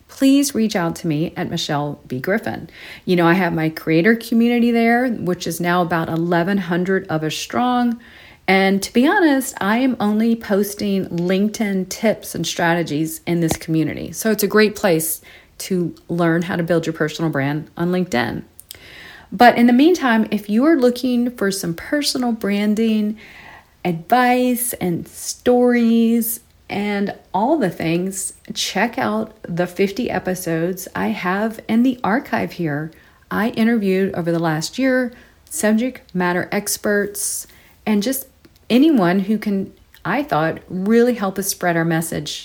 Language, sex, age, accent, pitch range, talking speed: English, female, 40-59, American, 170-225 Hz, 150 wpm